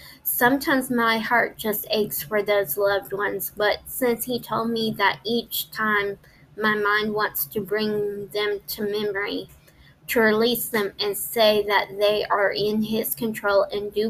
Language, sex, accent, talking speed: English, female, American, 160 wpm